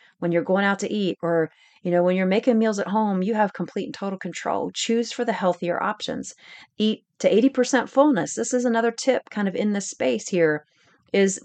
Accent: American